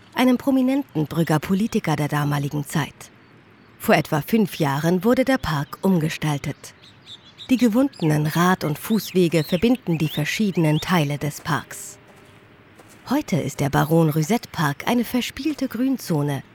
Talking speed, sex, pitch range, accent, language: 120 wpm, female, 150-200 Hz, German, Dutch